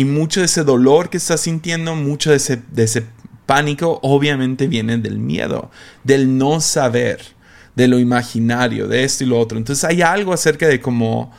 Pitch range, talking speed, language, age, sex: 115-140 Hz, 185 wpm, Spanish, 30-49, male